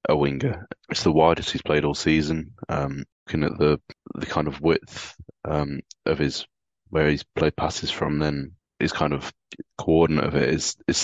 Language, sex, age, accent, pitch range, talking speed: English, male, 20-39, British, 75-80 Hz, 185 wpm